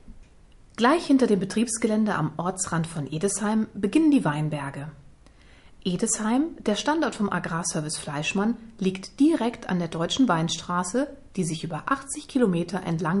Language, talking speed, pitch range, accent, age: German, 130 wpm, 165-240 Hz, German, 30-49